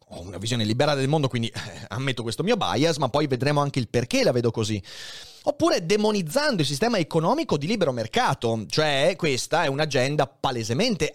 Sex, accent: male, native